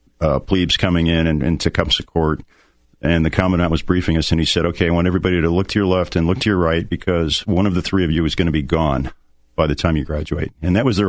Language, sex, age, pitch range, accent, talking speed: English, male, 50-69, 80-95 Hz, American, 285 wpm